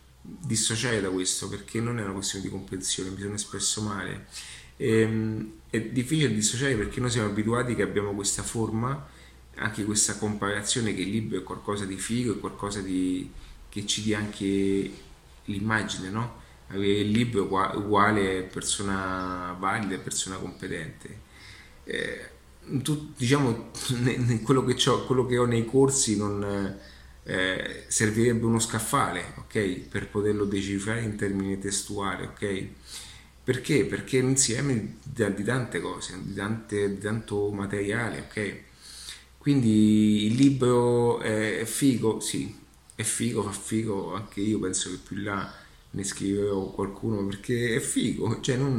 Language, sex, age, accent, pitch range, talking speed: Italian, male, 30-49, native, 100-115 Hz, 145 wpm